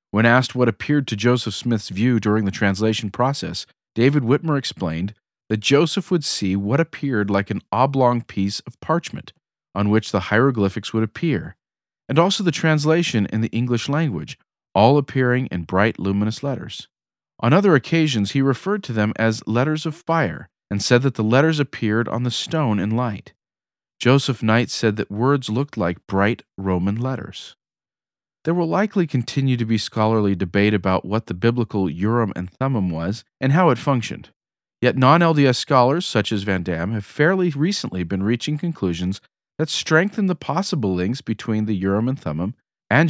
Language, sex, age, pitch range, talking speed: English, male, 40-59, 100-140 Hz, 175 wpm